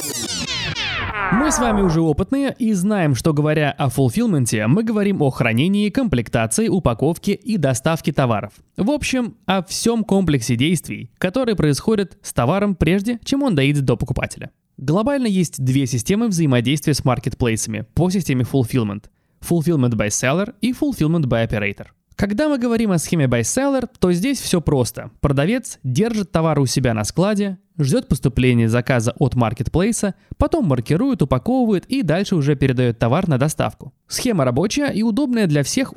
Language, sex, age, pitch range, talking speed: Russian, male, 20-39, 125-195 Hz, 150 wpm